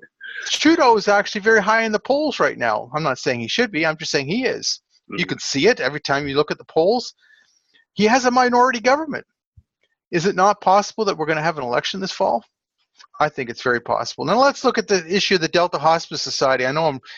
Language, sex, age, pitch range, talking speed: English, male, 40-59, 150-210 Hz, 240 wpm